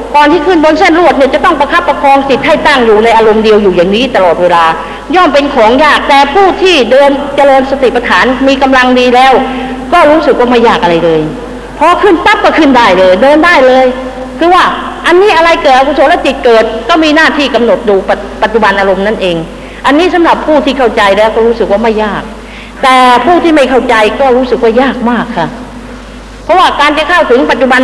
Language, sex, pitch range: Thai, female, 230-300 Hz